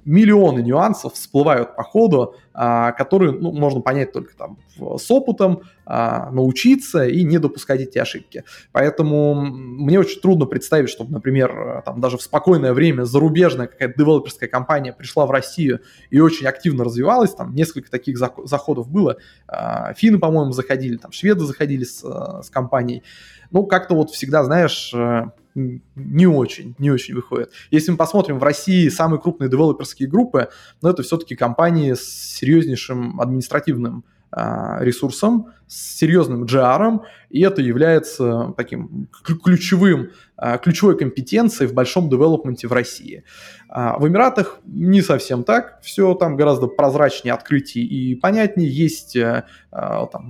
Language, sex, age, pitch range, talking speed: Russian, male, 20-39, 130-180 Hz, 130 wpm